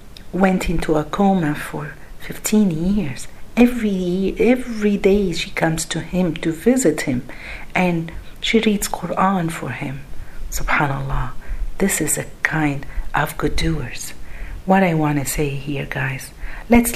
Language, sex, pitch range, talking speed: Arabic, female, 145-205 Hz, 140 wpm